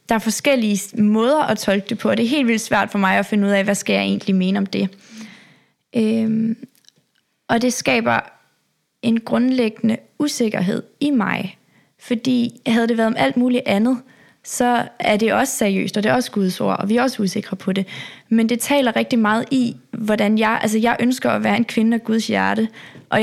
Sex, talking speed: female, 210 wpm